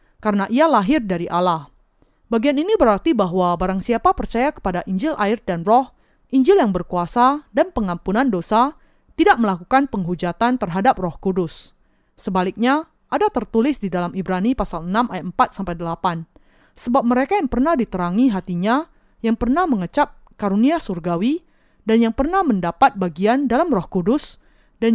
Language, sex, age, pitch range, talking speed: Indonesian, female, 20-39, 185-270 Hz, 145 wpm